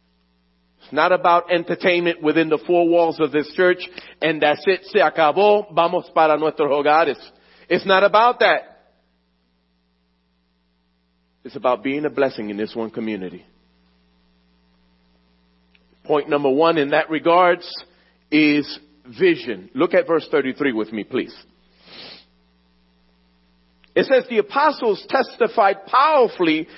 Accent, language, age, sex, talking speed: American, English, 40-59, male, 120 wpm